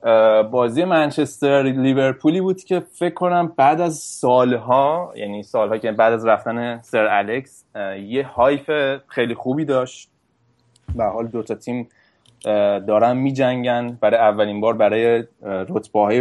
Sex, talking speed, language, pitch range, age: male, 135 wpm, Persian, 110-135 Hz, 20-39